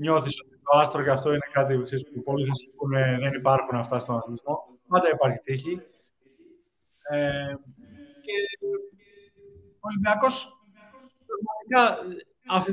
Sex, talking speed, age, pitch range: male, 120 wpm, 20-39, 165-205 Hz